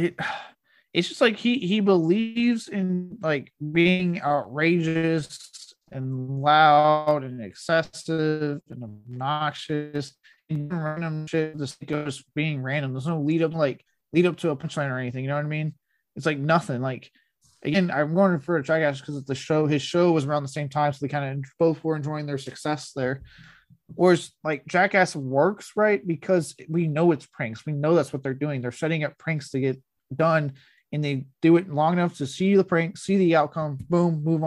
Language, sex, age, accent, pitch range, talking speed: English, male, 20-39, American, 140-170 Hz, 195 wpm